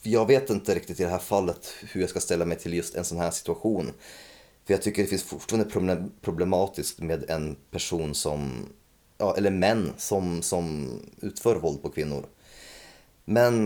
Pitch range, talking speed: 85-105 Hz, 170 wpm